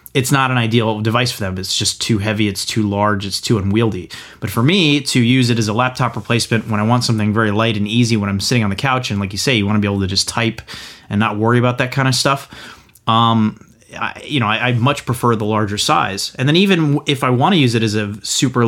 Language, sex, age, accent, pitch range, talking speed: English, male, 30-49, American, 105-125 Hz, 265 wpm